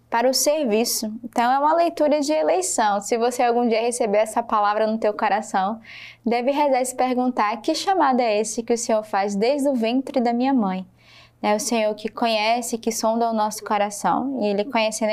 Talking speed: 200 wpm